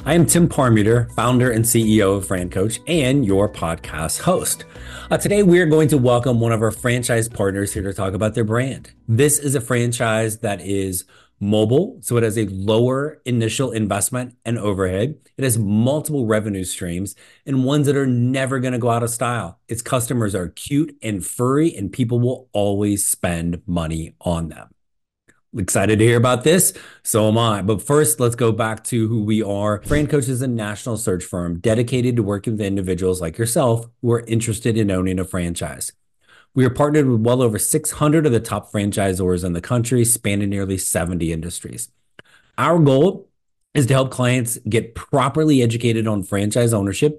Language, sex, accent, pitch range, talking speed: English, male, American, 100-125 Hz, 185 wpm